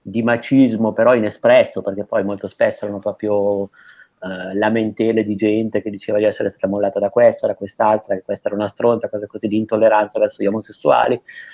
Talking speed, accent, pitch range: 185 wpm, native, 105-120 Hz